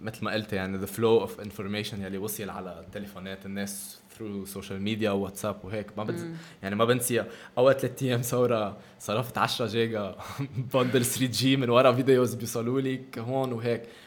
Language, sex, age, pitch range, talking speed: Arabic, male, 20-39, 100-130 Hz, 170 wpm